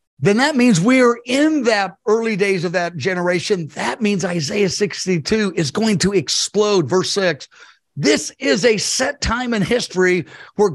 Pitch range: 170-225 Hz